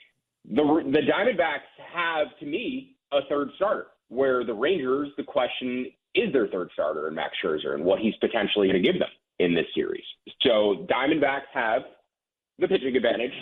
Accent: American